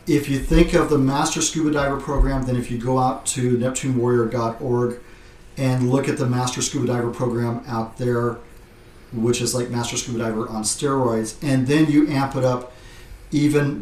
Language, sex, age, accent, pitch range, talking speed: English, male, 40-59, American, 120-135 Hz, 180 wpm